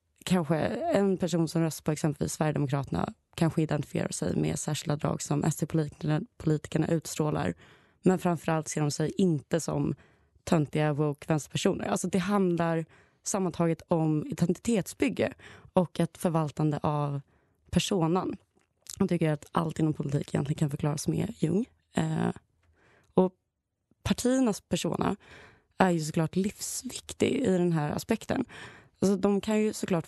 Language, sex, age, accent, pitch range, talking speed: Swedish, female, 20-39, native, 150-185 Hz, 130 wpm